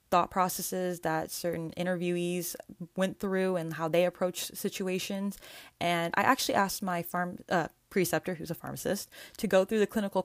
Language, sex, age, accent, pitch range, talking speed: English, female, 20-39, American, 160-200 Hz, 160 wpm